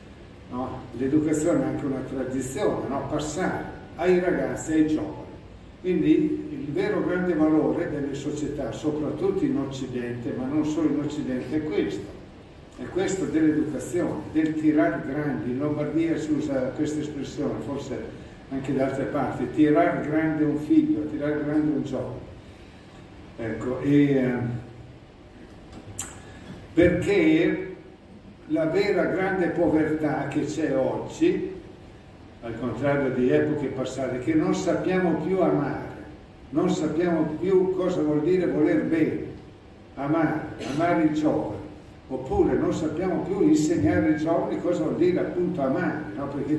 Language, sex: Italian, male